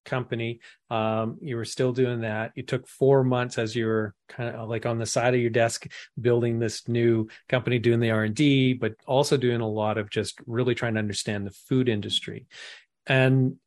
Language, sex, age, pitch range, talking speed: English, male, 40-59, 110-130 Hz, 200 wpm